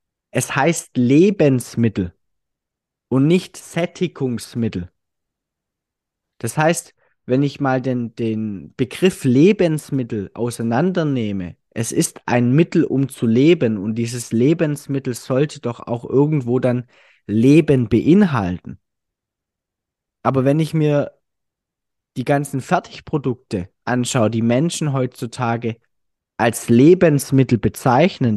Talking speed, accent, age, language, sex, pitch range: 100 wpm, German, 20-39, German, male, 110-145 Hz